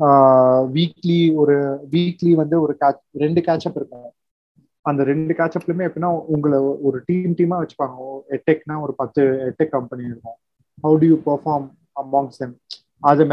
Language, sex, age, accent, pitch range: Tamil, male, 30-49, native, 130-165 Hz